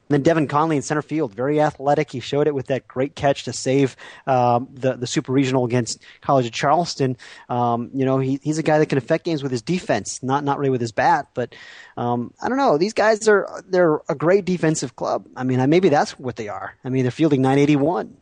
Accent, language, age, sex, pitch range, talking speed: American, English, 30-49, male, 125-155 Hz, 235 wpm